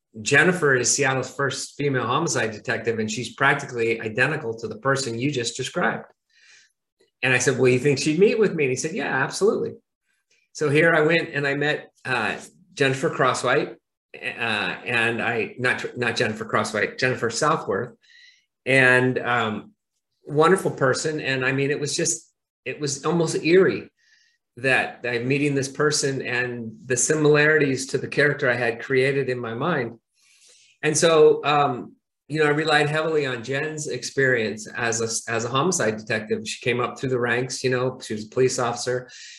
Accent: American